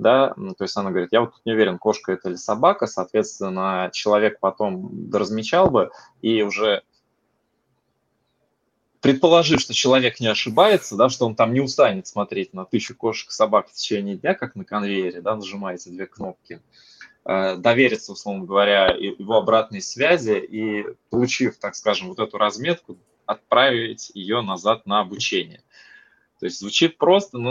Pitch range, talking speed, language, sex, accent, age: 100-125 Hz, 150 wpm, Russian, male, native, 20-39